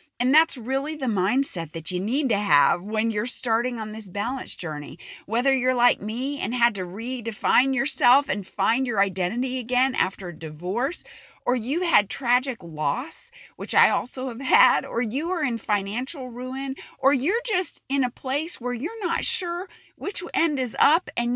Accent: American